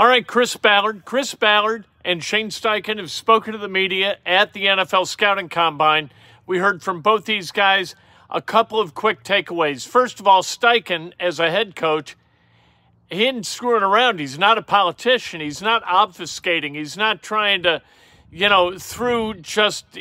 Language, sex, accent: English, male, American